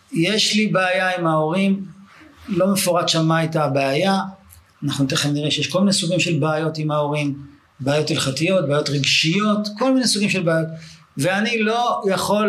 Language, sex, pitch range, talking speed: Hebrew, male, 140-185 Hz, 165 wpm